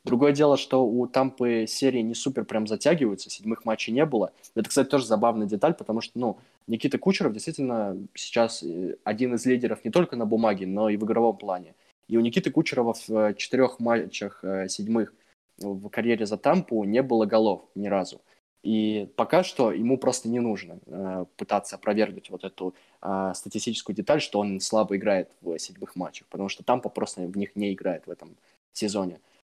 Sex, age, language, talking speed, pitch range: male, 20-39, Russian, 175 wpm, 105-125 Hz